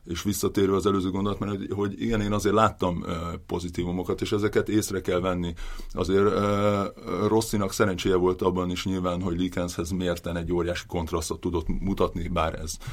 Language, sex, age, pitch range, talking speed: Hungarian, male, 30-49, 85-105 Hz, 155 wpm